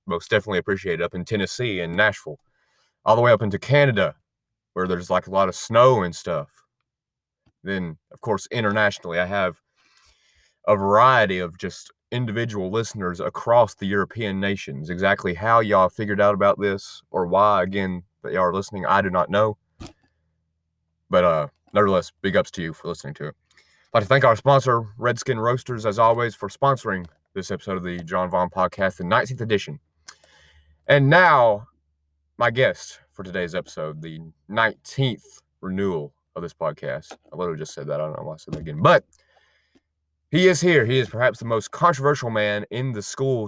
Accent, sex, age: American, male, 30-49